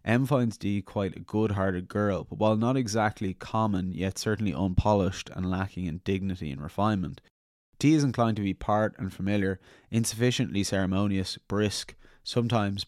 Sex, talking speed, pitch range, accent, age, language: male, 155 wpm, 95-115 Hz, Irish, 20-39, English